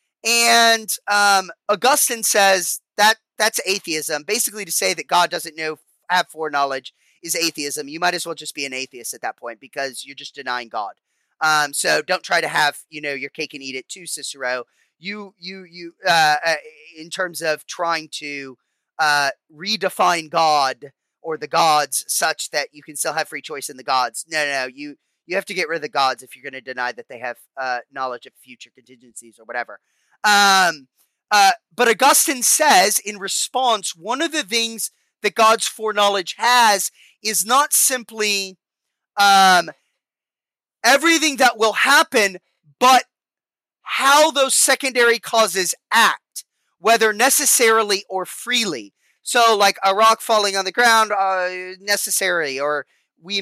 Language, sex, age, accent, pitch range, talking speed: English, male, 30-49, American, 150-220 Hz, 165 wpm